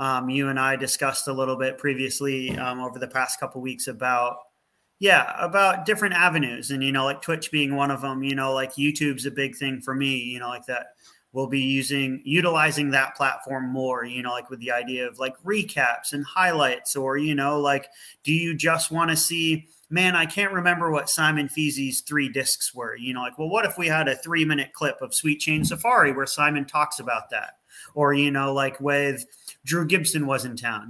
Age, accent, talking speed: 30-49, American, 220 wpm